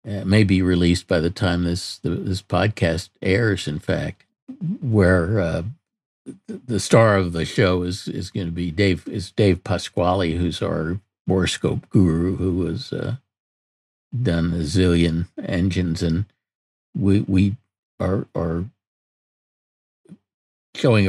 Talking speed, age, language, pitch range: 135 wpm, 60-79, English, 85-105 Hz